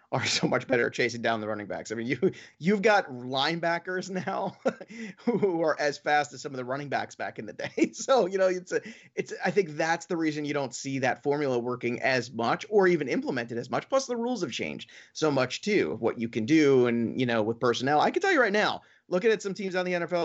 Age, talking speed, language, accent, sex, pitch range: 30-49, 250 wpm, English, American, male, 130-170 Hz